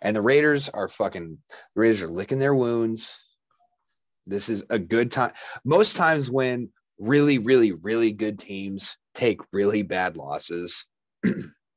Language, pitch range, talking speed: English, 100-135 Hz, 145 wpm